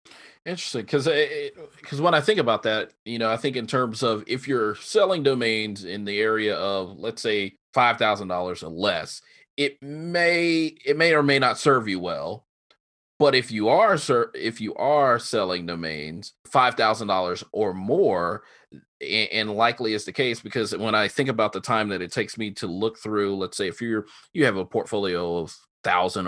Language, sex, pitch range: English, male, 95-115 Hz